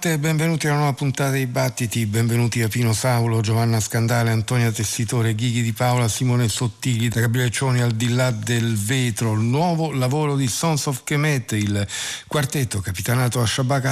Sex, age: male, 50-69